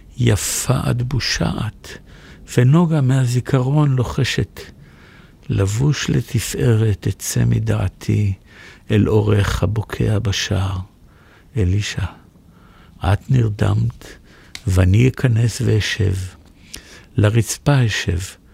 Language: Hebrew